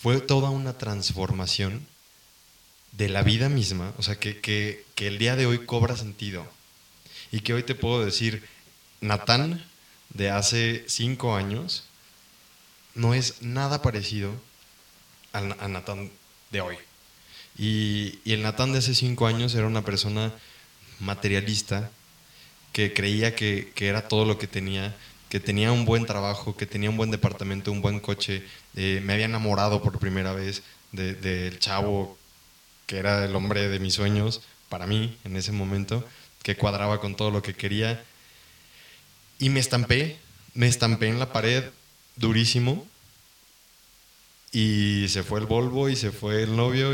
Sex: male